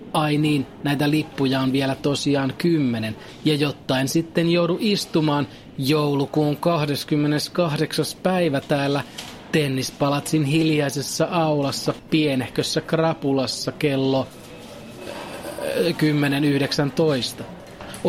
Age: 30-49